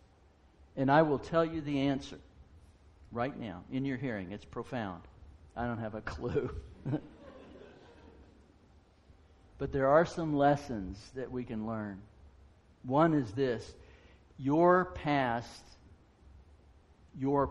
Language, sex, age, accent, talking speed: English, male, 60-79, American, 115 wpm